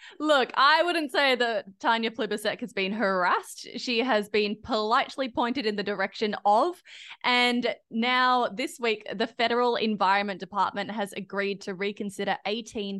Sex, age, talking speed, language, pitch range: female, 20-39, 150 wpm, English, 185-230 Hz